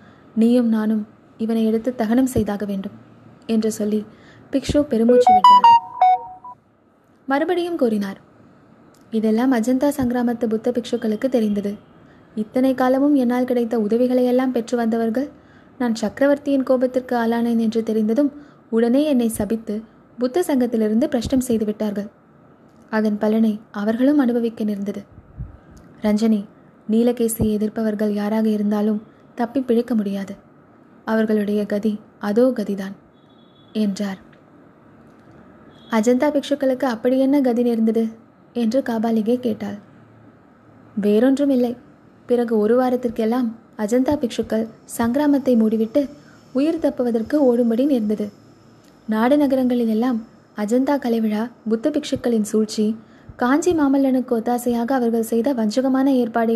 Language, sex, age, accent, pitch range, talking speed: Tamil, female, 20-39, native, 220-255 Hz, 100 wpm